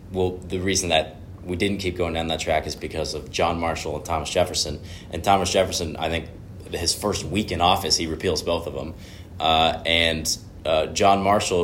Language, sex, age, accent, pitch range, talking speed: English, male, 20-39, American, 85-95 Hz, 200 wpm